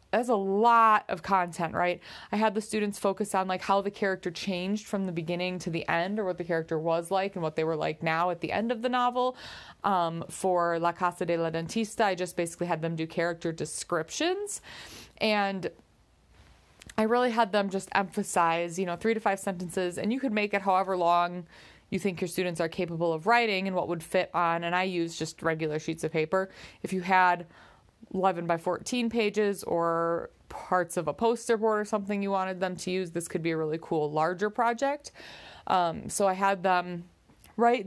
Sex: female